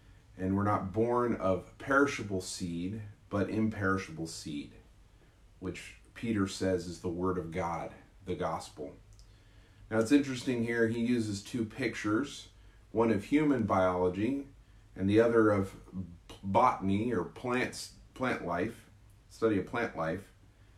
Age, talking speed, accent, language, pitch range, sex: 30-49, 130 wpm, American, English, 95-110 Hz, male